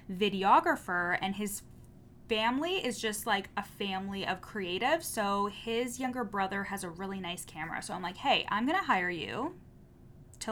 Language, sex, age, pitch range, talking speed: English, female, 20-39, 195-250 Hz, 170 wpm